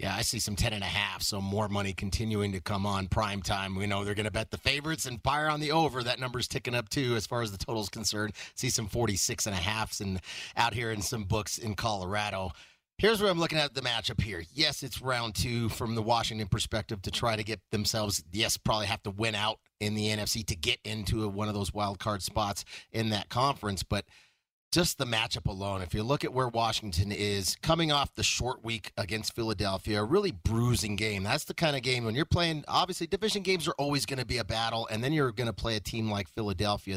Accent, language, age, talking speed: American, English, 30-49, 240 wpm